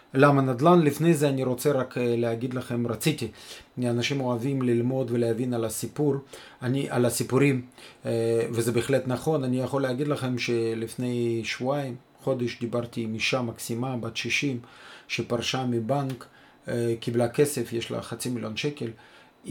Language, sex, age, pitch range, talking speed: Hebrew, male, 40-59, 120-145 Hz, 135 wpm